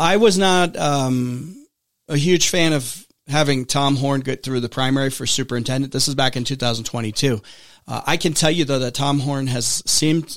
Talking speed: 190 wpm